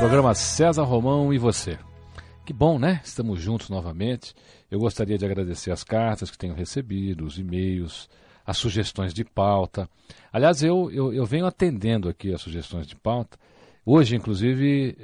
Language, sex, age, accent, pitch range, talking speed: Portuguese, male, 50-69, Brazilian, 95-120 Hz, 155 wpm